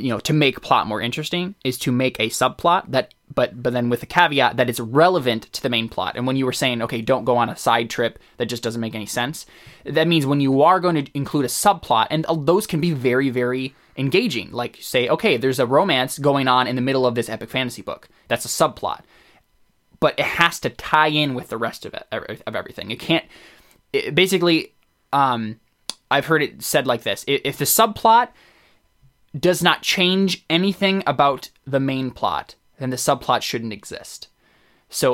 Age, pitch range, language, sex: 20-39, 125-160 Hz, English, male